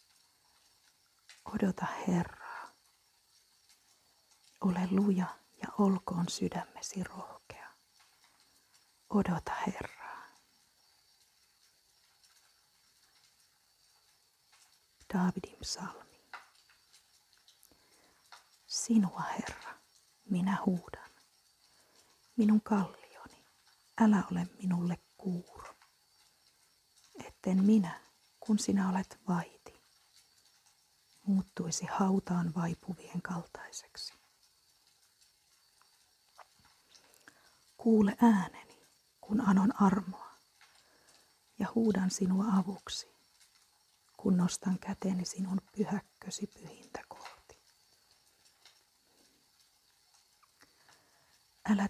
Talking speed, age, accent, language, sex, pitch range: 55 wpm, 40-59, native, Finnish, female, 180-210 Hz